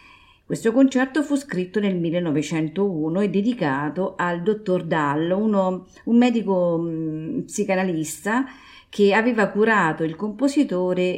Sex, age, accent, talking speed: female, 40-59, native, 100 wpm